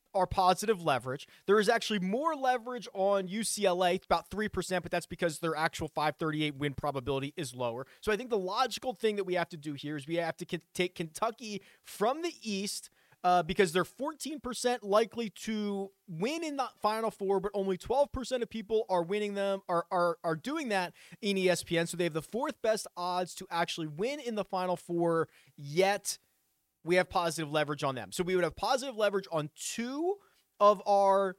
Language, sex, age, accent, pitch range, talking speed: English, male, 30-49, American, 165-210 Hz, 195 wpm